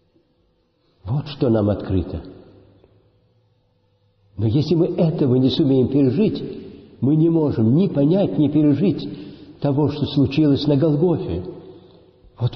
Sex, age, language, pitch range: male, 60-79, Russian, 100-150 Hz